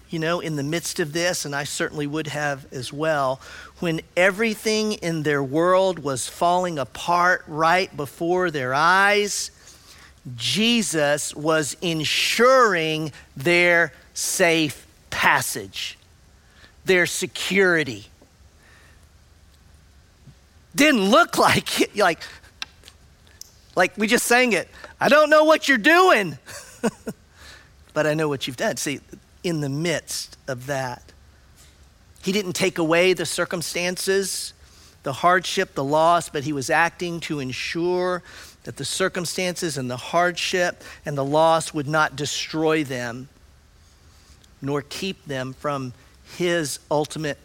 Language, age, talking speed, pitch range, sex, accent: English, 50-69, 125 wpm, 115-175 Hz, male, American